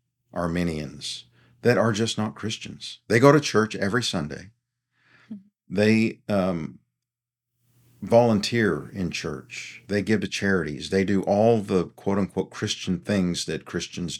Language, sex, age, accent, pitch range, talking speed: English, male, 50-69, American, 95-120 Hz, 130 wpm